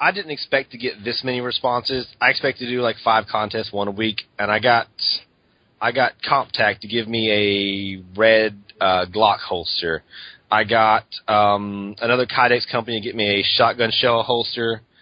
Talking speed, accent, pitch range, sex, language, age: 180 wpm, American, 100-125 Hz, male, English, 30-49